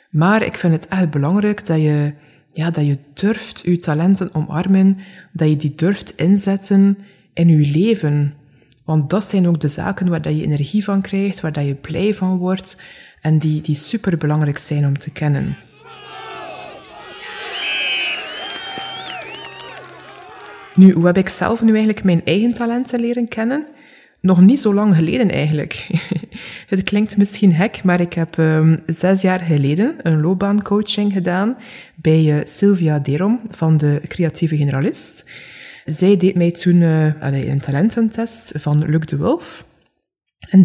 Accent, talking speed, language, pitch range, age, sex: German, 145 wpm, Dutch, 155-200 Hz, 20-39, female